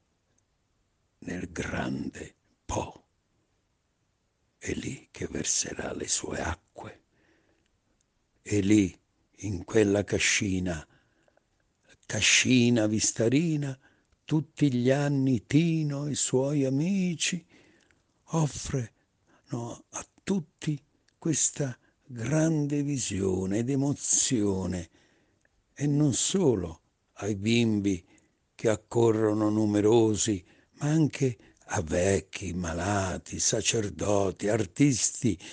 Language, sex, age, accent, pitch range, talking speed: Italian, male, 60-79, native, 95-135 Hz, 80 wpm